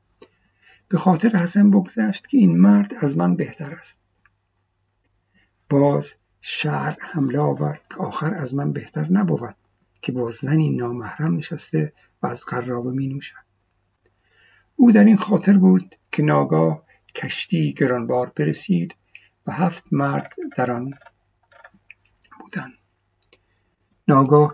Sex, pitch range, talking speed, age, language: male, 100-170 Hz, 115 wpm, 60-79, Persian